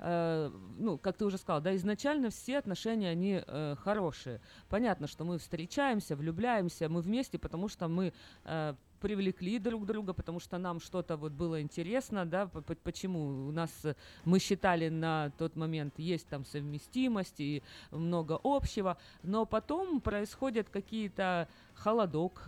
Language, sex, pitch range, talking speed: Russian, female, 155-195 Hz, 140 wpm